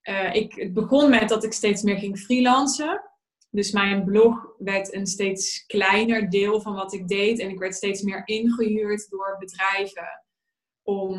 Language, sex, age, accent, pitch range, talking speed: Dutch, female, 20-39, Dutch, 190-220 Hz, 170 wpm